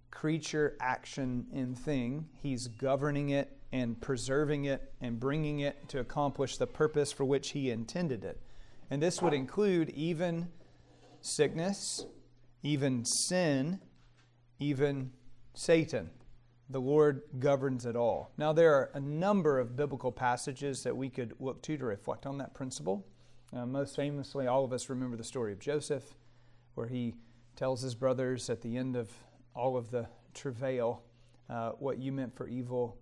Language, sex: English, male